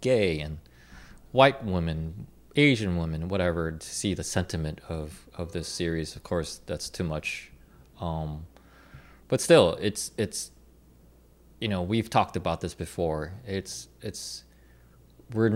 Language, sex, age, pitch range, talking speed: English, male, 20-39, 70-100 Hz, 135 wpm